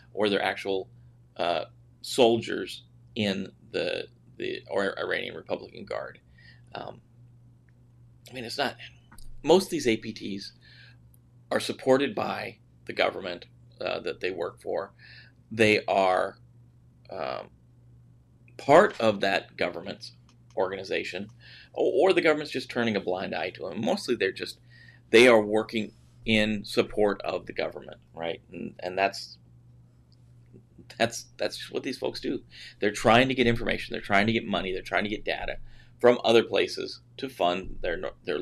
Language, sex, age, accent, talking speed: English, male, 40-59, American, 145 wpm